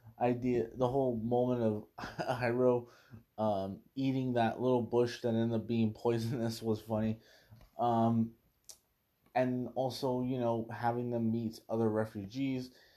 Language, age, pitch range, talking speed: English, 20-39, 105-120 Hz, 130 wpm